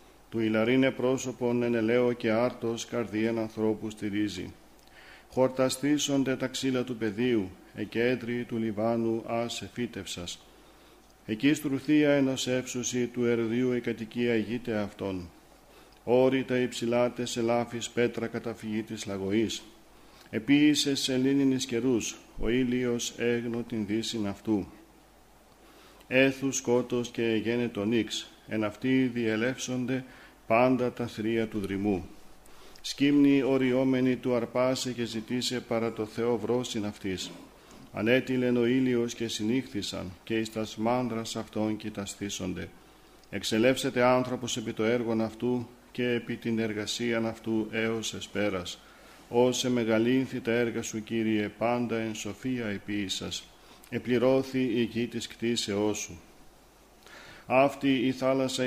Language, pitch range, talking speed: Greek, 110-125 Hz, 120 wpm